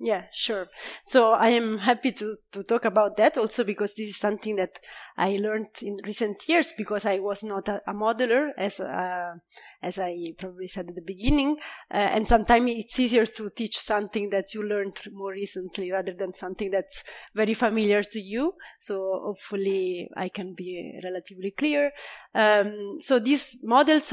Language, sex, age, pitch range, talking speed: English, female, 30-49, 200-235 Hz, 175 wpm